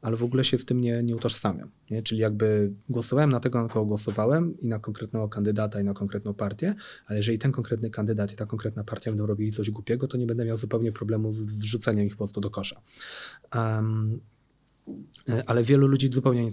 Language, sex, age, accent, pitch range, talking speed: Polish, male, 30-49, native, 110-135 Hz, 210 wpm